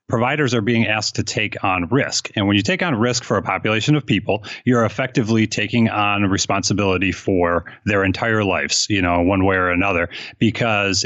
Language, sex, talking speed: English, male, 190 wpm